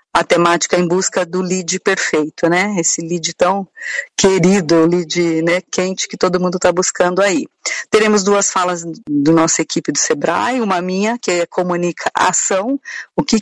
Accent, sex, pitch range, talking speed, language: Brazilian, female, 170-205 Hz, 160 wpm, Portuguese